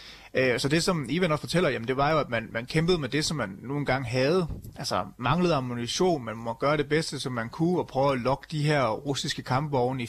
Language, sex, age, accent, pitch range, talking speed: Danish, male, 30-49, native, 120-155 Hz, 255 wpm